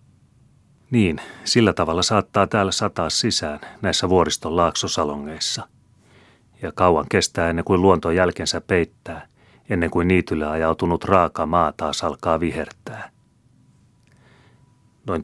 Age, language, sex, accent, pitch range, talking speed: 30-49, Finnish, male, native, 80-95 Hz, 110 wpm